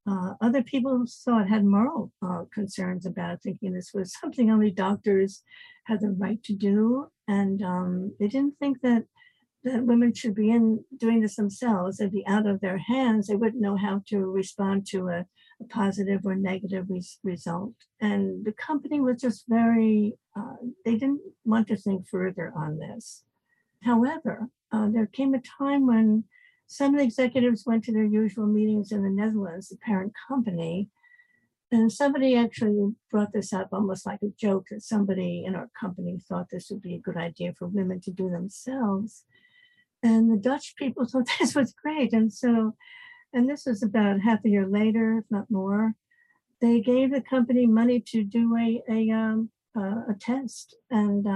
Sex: female